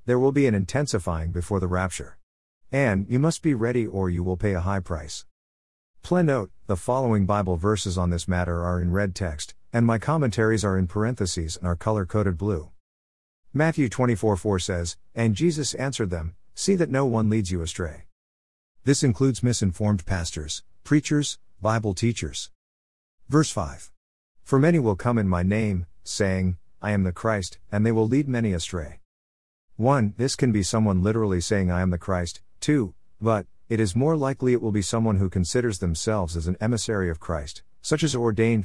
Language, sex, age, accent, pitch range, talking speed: English, male, 50-69, American, 85-115 Hz, 180 wpm